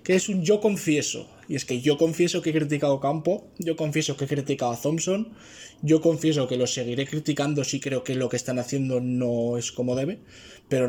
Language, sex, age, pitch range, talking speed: Spanish, male, 20-39, 135-165 Hz, 220 wpm